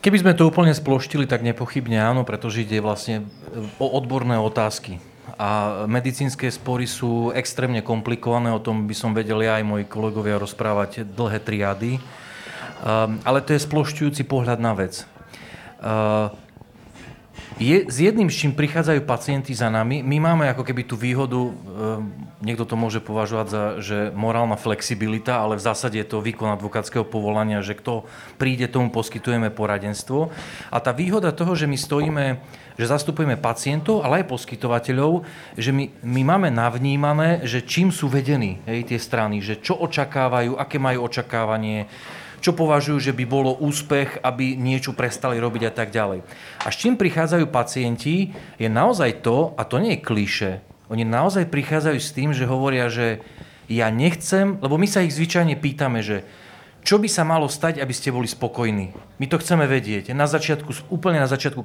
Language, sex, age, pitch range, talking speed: Slovak, male, 40-59, 110-145 Hz, 165 wpm